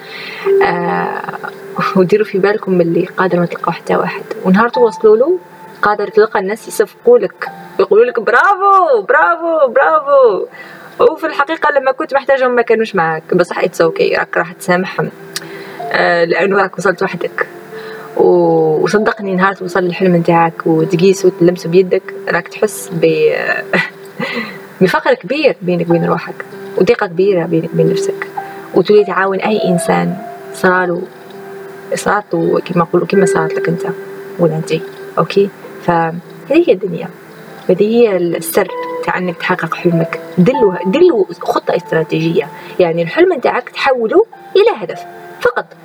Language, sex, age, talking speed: Arabic, female, 20-39, 125 wpm